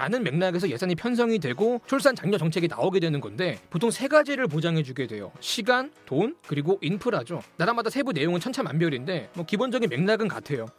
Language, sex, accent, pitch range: Korean, male, native, 170-235 Hz